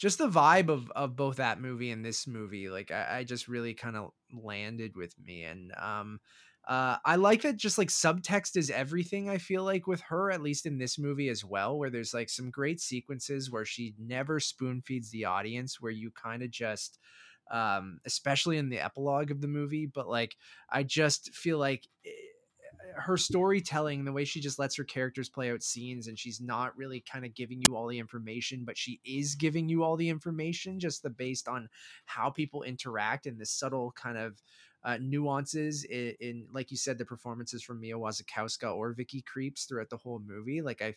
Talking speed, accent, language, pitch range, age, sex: 205 wpm, American, English, 115-150 Hz, 20-39, male